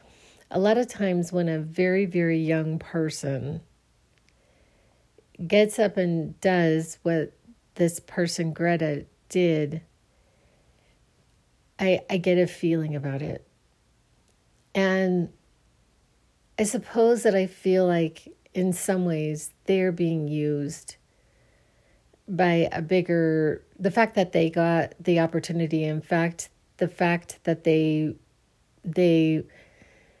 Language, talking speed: English, 110 wpm